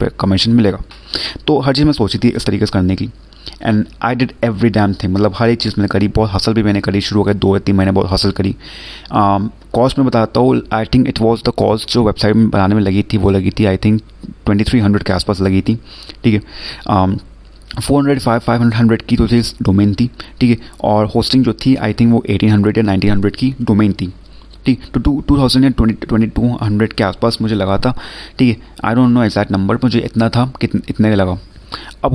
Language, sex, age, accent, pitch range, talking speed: Hindi, male, 30-49, native, 100-120 Hz, 225 wpm